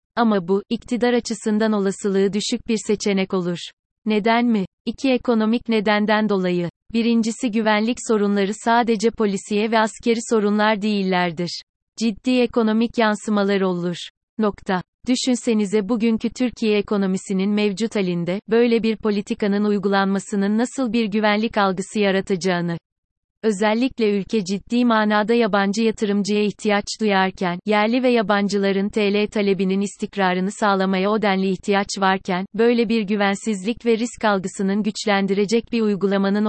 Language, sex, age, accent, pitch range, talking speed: Turkish, female, 30-49, native, 195-225 Hz, 120 wpm